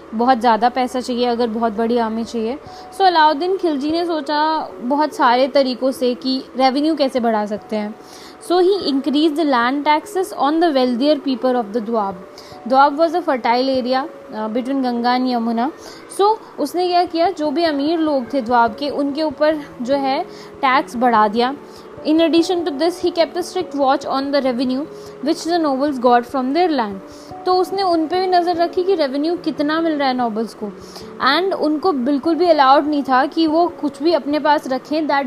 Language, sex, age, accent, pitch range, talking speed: Hindi, female, 20-39, native, 255-325 Hz, 190 wpm